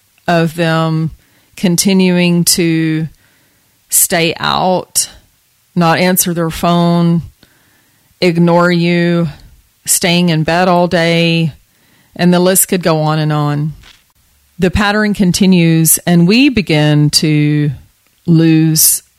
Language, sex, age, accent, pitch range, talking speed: English, female, 40-59, American, 155-180 Hz, 105 wpm